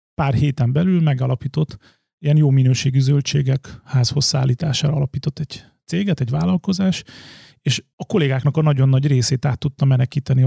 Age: 30-49